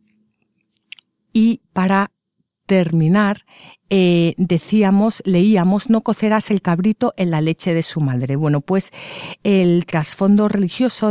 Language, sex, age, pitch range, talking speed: Spanish, female, 50-69, 165-215 Hz, 115 wpm